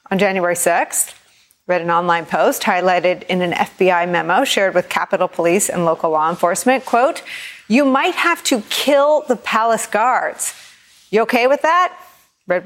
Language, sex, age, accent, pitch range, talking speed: English, female, 40-59, American, 185-265 Hz, 160 wpm